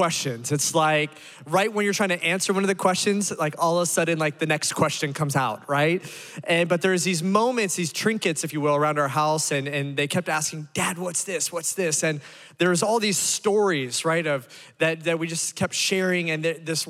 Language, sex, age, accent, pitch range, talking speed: English, male, 20-39, American, 150-185 Hz, 225 wpm